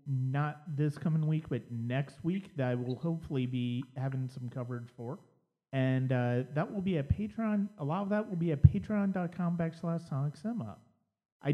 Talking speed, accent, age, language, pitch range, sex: 180 wpm, American, 40-59, English, 130-170 Hz, male